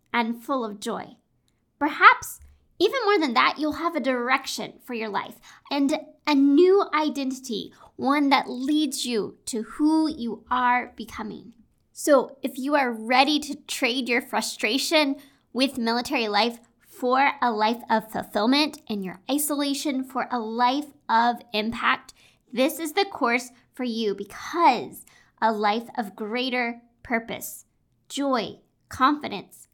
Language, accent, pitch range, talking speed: English, American, 225-285 Hz, 135 wpm